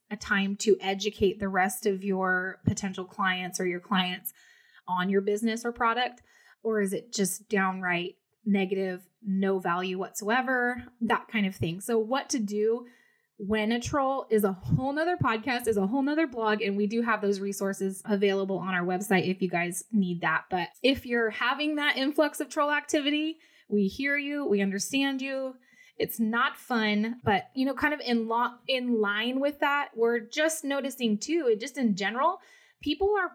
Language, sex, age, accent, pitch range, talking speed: English, female, 20-39, American, 200-270 Hz, 180 wpm